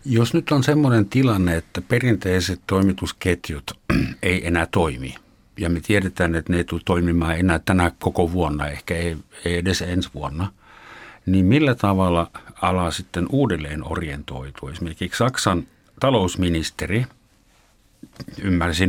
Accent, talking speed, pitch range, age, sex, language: native, 125 wpm, 85-110 Hz, 60-79, male, Finnish